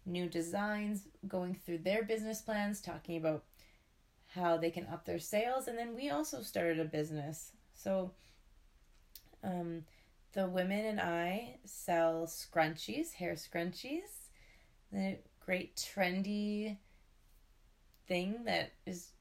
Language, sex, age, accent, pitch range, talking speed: English, female, 20-39, American, 165-200 Hz, 120 wpm